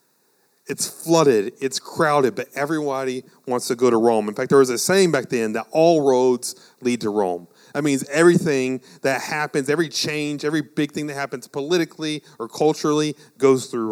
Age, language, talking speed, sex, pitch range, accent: 40-59, English, 180 wpm, male, 120-155 Hz, American